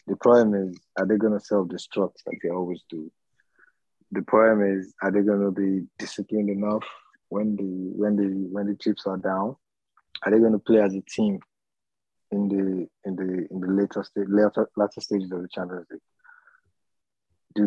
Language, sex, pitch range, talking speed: English, male, 95-105 Hz, 185 wpm